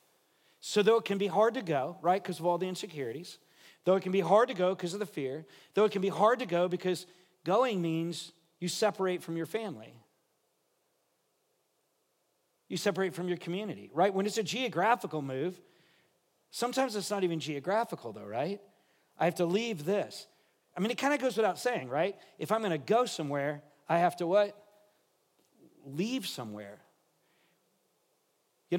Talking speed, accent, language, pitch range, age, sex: 175 wpm, American, English, 160-210 Hz, 50-69, male